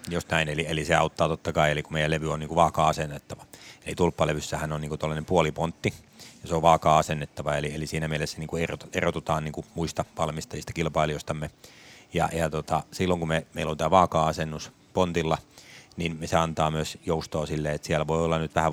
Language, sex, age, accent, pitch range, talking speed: Finnish, male, 30-49, native, 75-85 Hz, 180 wpm